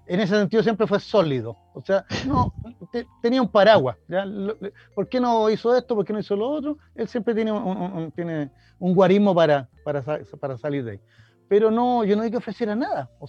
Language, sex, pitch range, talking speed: Spanish, male, 155-215 Hz, 215 wpm